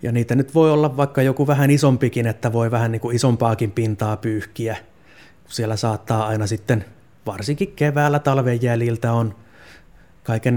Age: 20-39